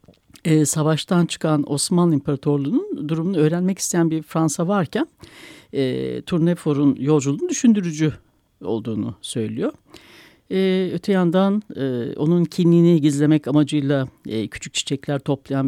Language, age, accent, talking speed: Turkish, 60-79, native, 110 wpm